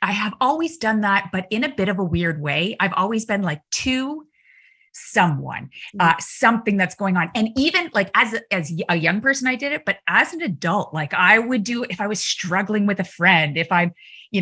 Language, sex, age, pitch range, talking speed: English, female, 30-49, 175-220 Hz, 220 wpm